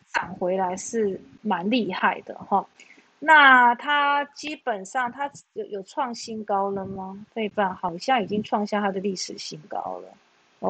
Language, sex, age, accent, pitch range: Chinese, female, 30-49, native, 195-250 Hz